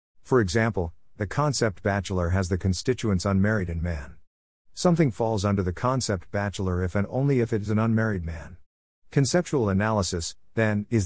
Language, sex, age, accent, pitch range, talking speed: English, male, 50-69, American, 90-115 Hz, 165 wpm